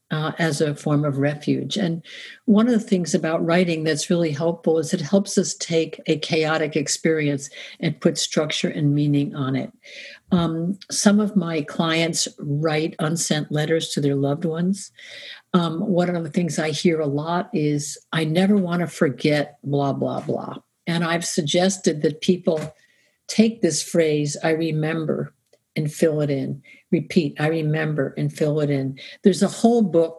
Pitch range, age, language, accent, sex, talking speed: 155-190 Hz, 60-79, English, American, female, 170 wpm